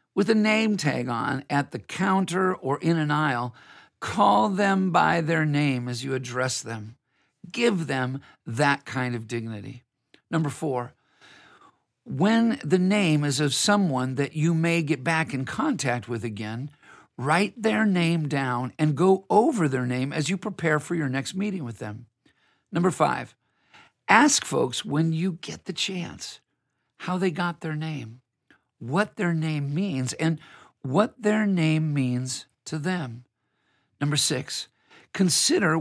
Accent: American